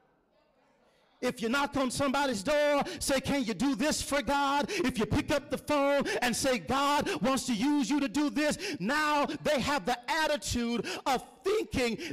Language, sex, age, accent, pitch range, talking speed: English, male, 40-59, American, 220-295 Hz, 180 wpm